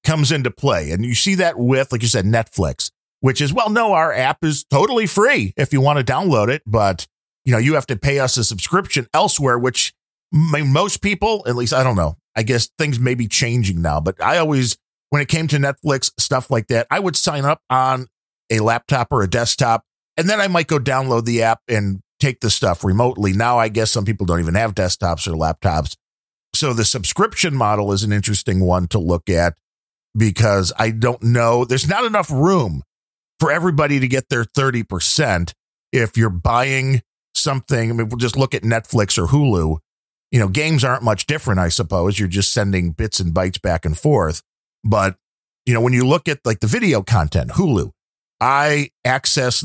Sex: male